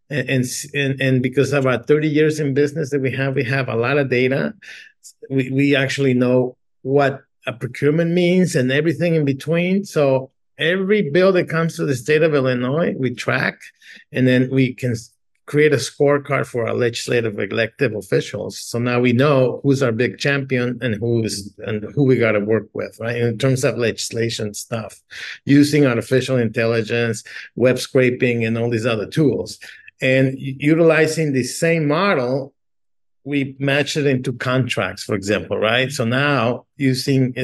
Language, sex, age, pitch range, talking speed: English, male, 50-69, 115-140 Hz, 165 wpm